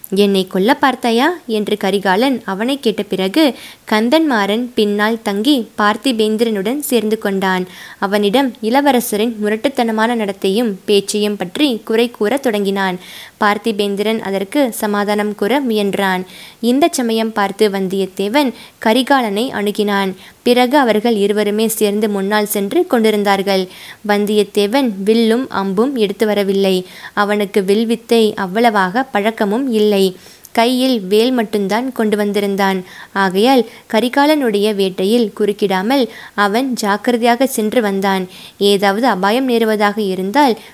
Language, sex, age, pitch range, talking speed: Tamil, female, 20-39, 200-235 Hz, 100 wpm